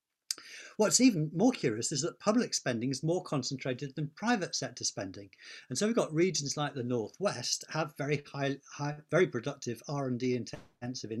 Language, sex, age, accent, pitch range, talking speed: English, male, 50-69, British, 125-160 Hz, 165 wpm